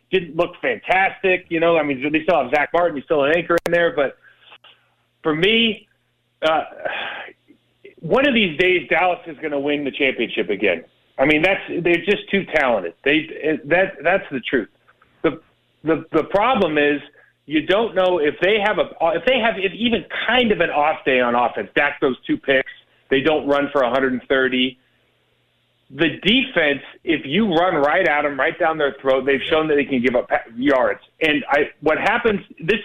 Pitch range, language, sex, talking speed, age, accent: 140-180 Hz, English, male, 190 wpm, 40-59, American